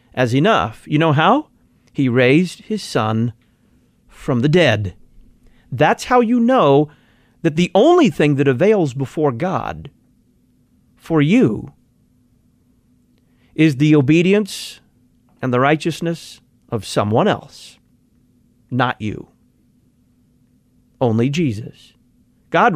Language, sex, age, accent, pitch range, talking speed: English, male, 40-59, American, 125-175 Hz, 105 wpm